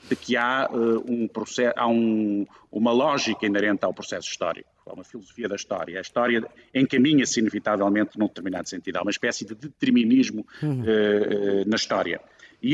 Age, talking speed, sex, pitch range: 50-69, 140 wpm, male, 100-125 Hz